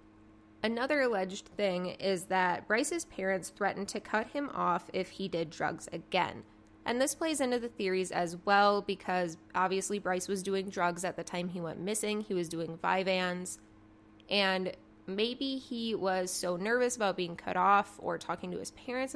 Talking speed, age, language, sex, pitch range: 175 wpm, 20-39, English, female, 170-210 Hz